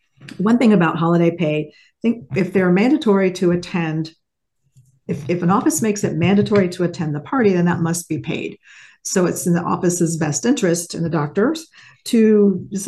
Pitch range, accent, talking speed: 165-200 Hz, American, 185 wpm